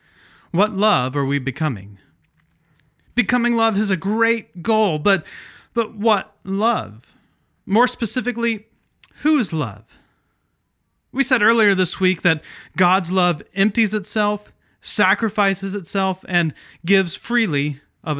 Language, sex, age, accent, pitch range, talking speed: English, male, 30-49, American, 130-210 Hz, 115 wpm